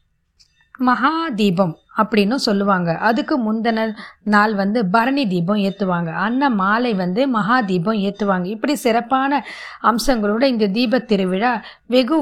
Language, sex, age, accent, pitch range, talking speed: Tamil, female, 20-39, native, 200-255 Hz, 110 wpm